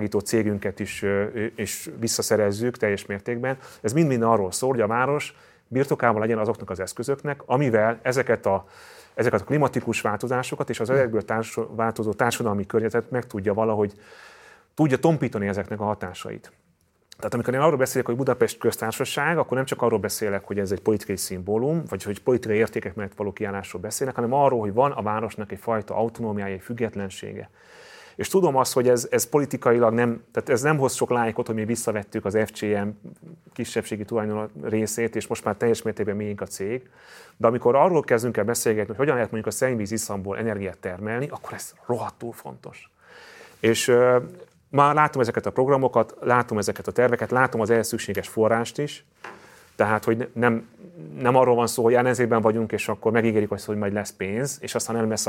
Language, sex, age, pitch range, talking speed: Hungarian, male, 30-49, 105-125 Hz, 175 wpm